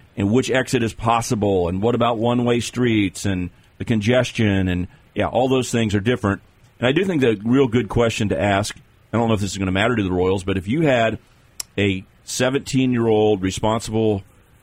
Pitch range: 100-120 Hz